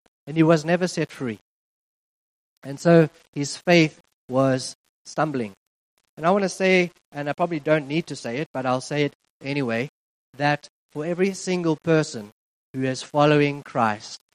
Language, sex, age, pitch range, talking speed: English, male, 30-49, 120-145 Hz, 165 wpm